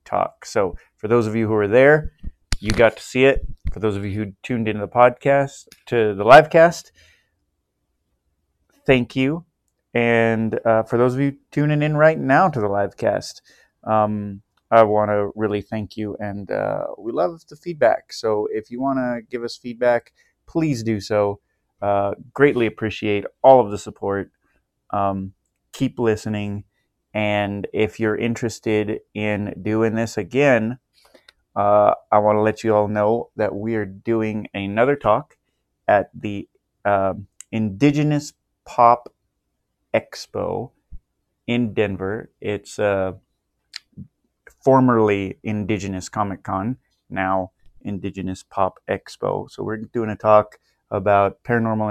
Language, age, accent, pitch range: English, 30-49, American, 100-120 Hz